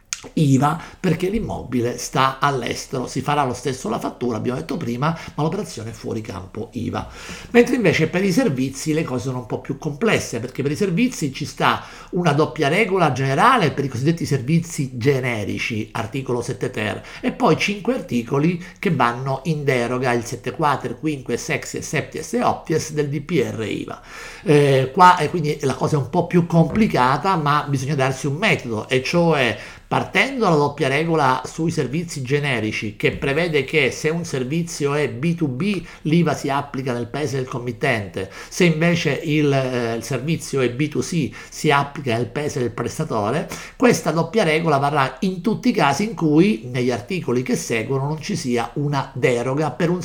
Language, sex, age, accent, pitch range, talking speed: Italian, male, 50-69, native, 125-165 Hz, 180 wpm